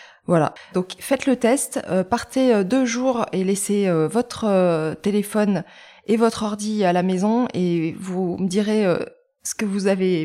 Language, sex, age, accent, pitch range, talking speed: French, female, 20-39, French, 185-240 Hz, 180 wpm